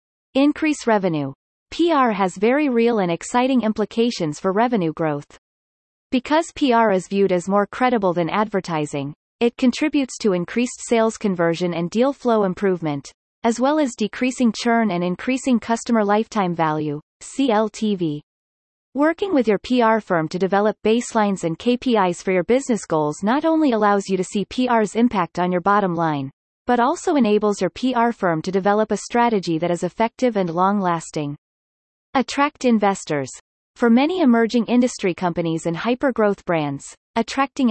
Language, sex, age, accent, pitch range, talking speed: English, female, 30-49, American, 180-245 Hz, 150 wpm